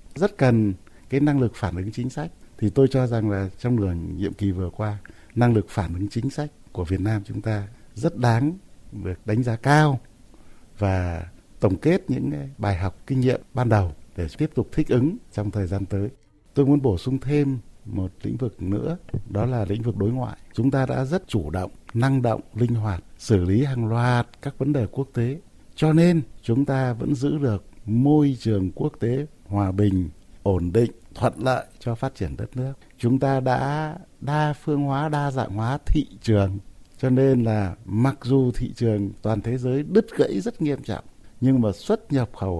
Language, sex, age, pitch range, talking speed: Vietnamese, male, 60-79, 100-135 Hz, 200 wpm